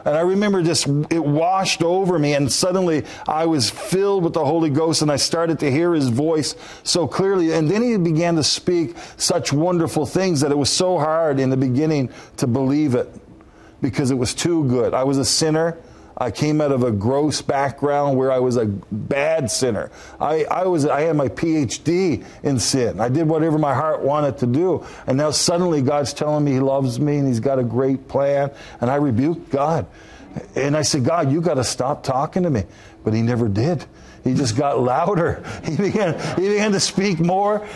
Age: 40-59